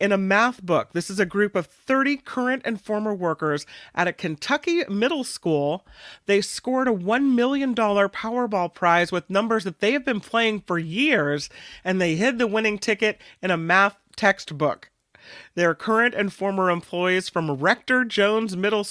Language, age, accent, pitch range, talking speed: English, 40-59, American, 170-225 Hz, 170 wpm